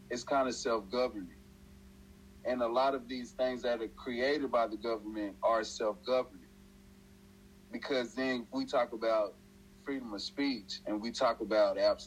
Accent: American